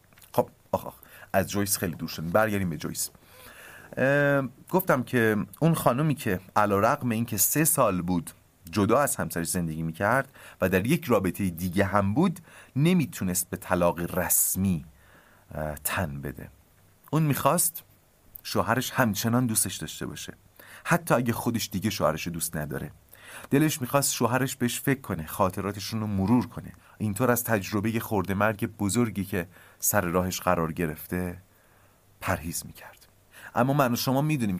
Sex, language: male, Persian